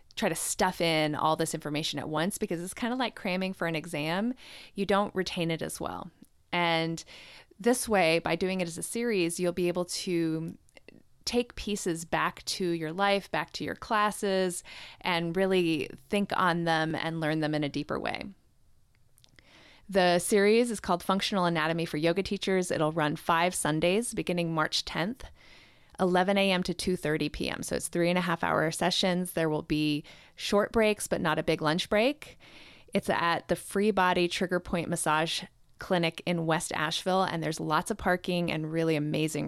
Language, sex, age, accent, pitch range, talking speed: English, female, 30-49, American, 160-190 Hz, 180 wpm